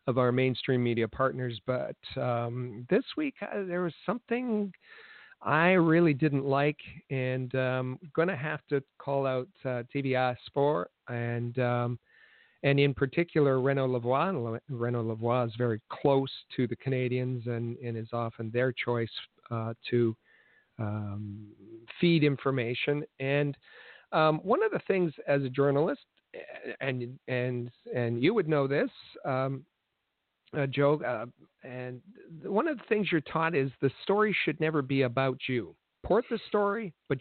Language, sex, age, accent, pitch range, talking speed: English, male, 50-69, American, 120-155 Hz, 150 wpm